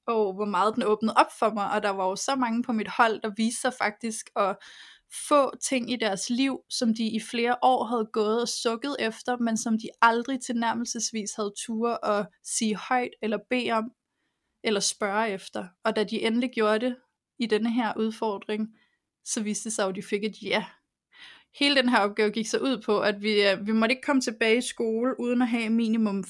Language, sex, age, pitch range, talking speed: Danish, female, 20-39, 215-255 Hz, 210 wpm